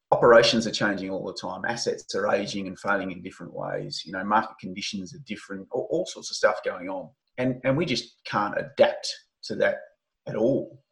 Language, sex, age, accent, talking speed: English, male, 30-49, Australian, 205 wpm